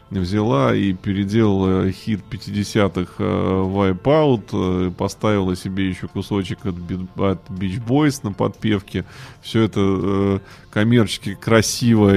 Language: Russian